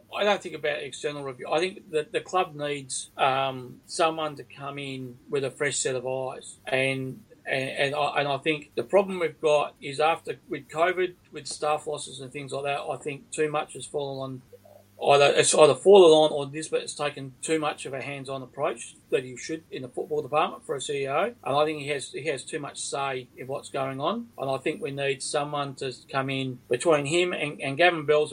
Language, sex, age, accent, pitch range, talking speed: English, male, 40-59, Australian, 140-165 Hz, 225 wpm